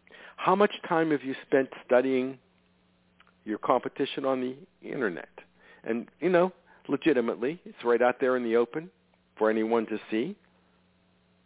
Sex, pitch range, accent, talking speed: male, 115-155 Hz, American, 140 wpm